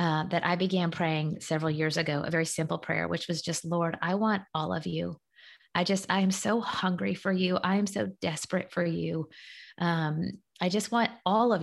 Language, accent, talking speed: English, American, 210 wpm